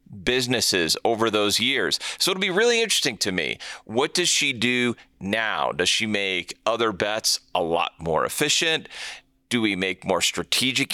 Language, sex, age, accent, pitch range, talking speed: English, male, 40-59, American, 100-130 Hz, 165 wpm